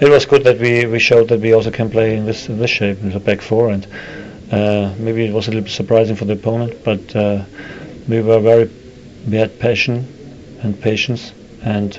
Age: 40-59